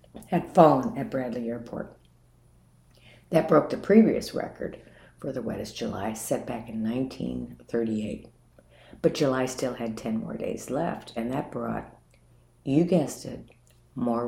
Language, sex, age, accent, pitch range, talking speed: English, female, 60-79, American, 115-150 Hz, 140 wpm